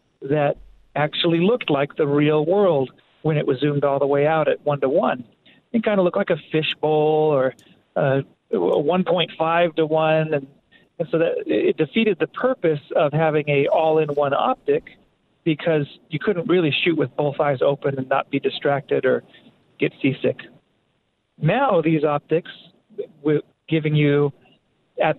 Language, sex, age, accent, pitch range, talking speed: English, male, 40-59, American, 140-165 Hz, 150 wpm